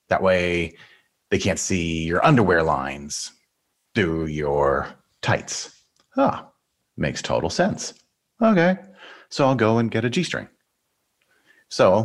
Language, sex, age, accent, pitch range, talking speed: English, male, 30-49, American, 85-125 Hz, 125 wpm